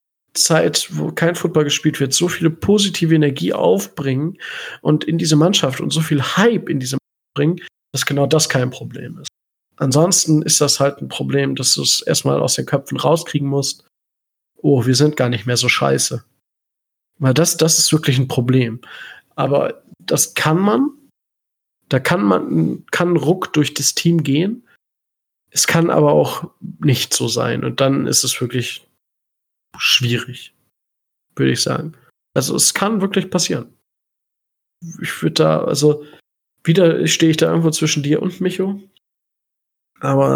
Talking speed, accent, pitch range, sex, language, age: 160 wpm, German, 125-170 Hz, male, German, 40-59